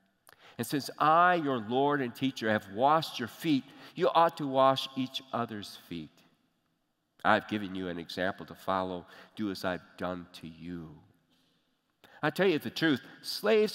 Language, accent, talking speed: English, American, 160 wpm